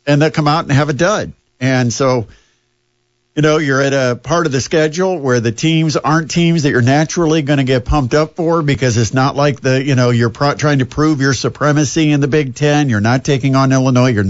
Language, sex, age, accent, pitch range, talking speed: English, male, 50-69, American, 120-150 Hz, 235 wpm